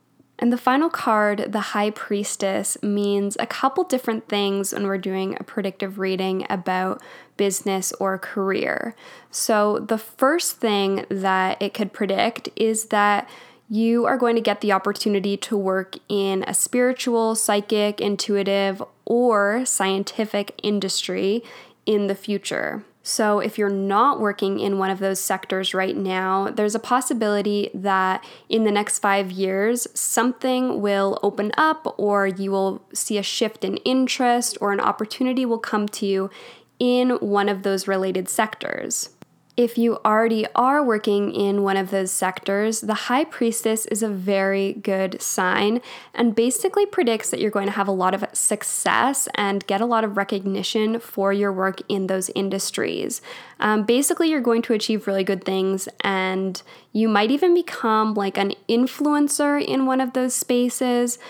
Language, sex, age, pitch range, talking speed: English, female, 10-29, 195-230 Hz, 160 wpm